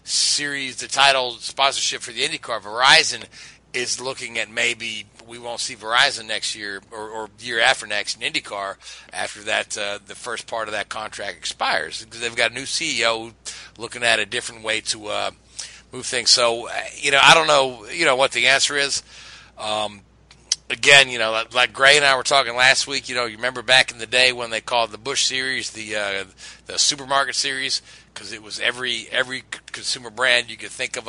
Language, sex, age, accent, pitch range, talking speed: English, male, 40-59, American, 115-135 Hz, 205 wpm